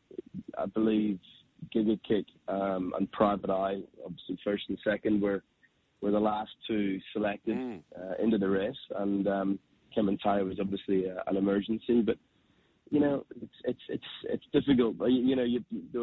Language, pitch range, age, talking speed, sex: English, 95-110 Hz, 20-39, 170 wpm, male